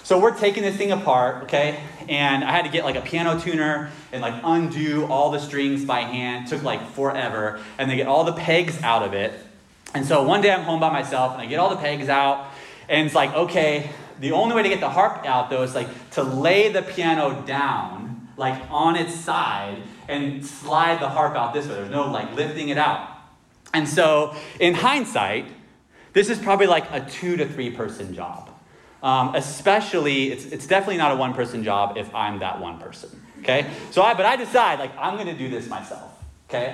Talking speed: 210 wpm